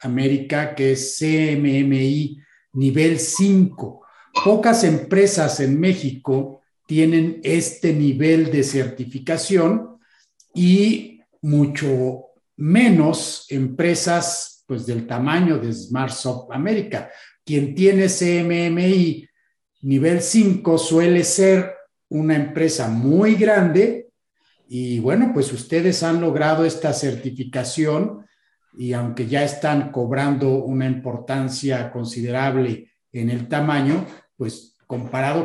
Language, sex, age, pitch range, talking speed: Spanish, male, 50-69, 135-175 Hz, 95 wpm